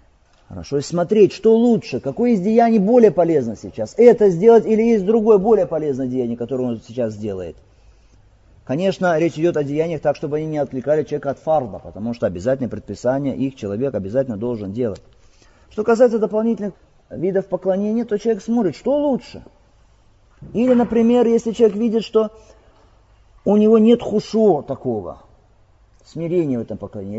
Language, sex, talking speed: Russian, male, 155 wpm